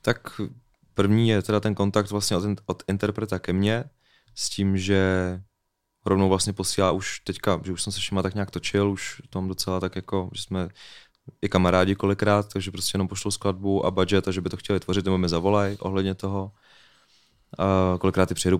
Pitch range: 90-100 Hz